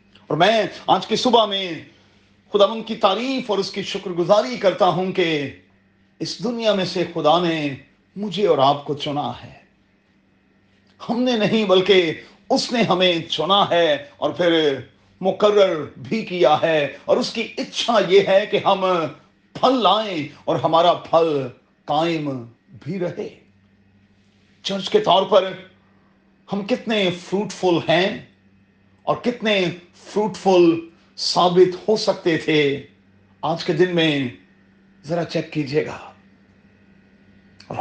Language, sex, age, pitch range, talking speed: Urdu, male, 40-59, 145-200 Hz, 135 wpm